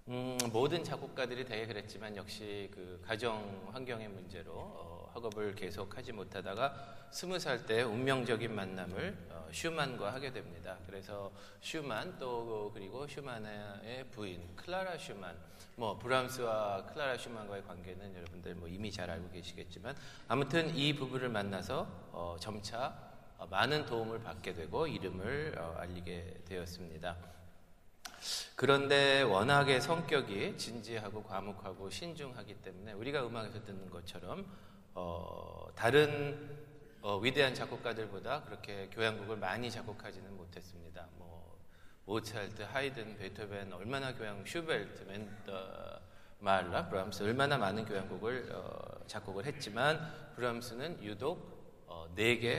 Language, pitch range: Korean, 95-125 Hz